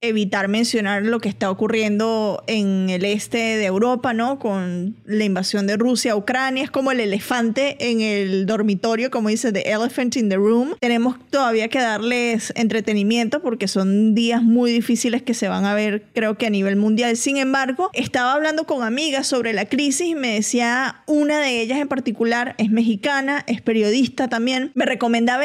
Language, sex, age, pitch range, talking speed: Spanish, female, 20-39, 220-270 Hz, 180 wpm